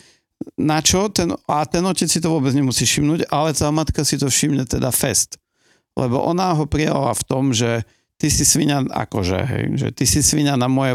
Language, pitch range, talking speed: Slovak, 110-145 Hz, 205 wpm